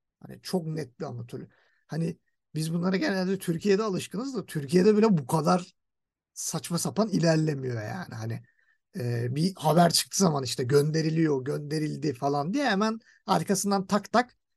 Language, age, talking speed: Turkish, 50-69, 145 wpm